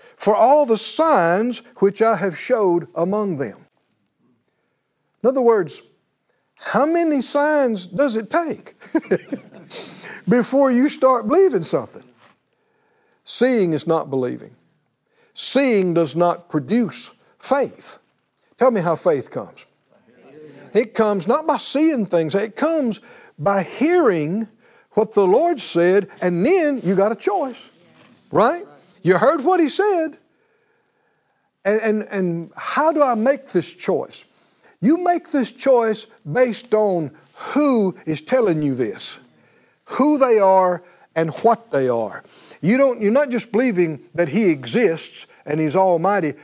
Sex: male